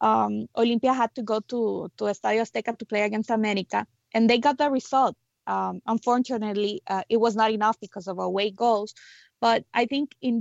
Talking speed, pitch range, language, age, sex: 190 wpm, 205-240 Hz, English, 20-39, female